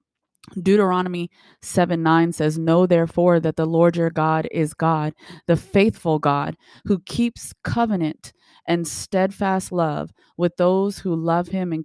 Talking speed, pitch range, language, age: 140 wpm, 160-185 Hz, English, 20-39